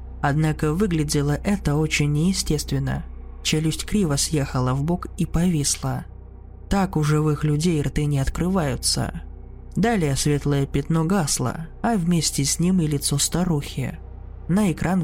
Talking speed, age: 130 wpm, 20-39